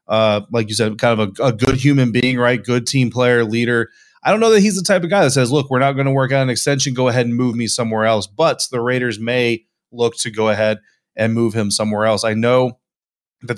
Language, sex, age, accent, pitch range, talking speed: English, male, 20-39, American, 110-130 Hz, 260 wpm